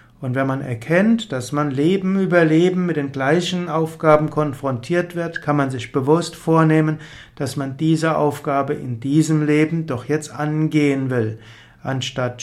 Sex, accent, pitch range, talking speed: male, German, 135-165 Hz, 155 wpm